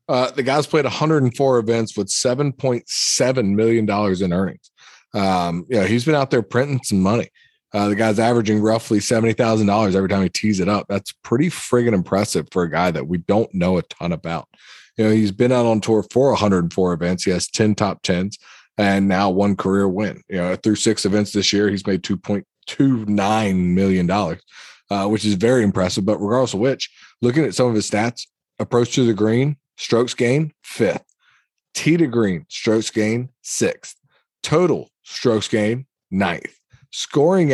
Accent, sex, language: American, male, English